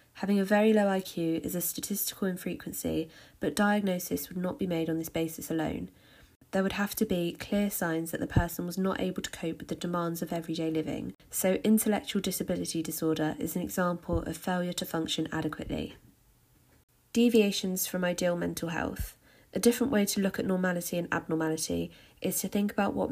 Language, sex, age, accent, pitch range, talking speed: English, female, 20-39, British, 165-200 Hz, 185 wpm